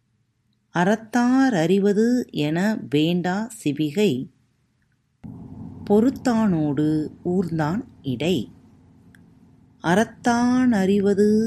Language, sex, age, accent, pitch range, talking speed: Tamil, female, 30-49, native, 150-210 Hz, 50 wpm